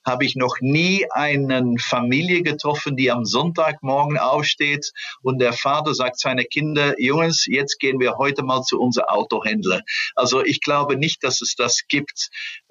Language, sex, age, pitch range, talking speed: German, male, 50-69, 125-155 Hz, 160 wpm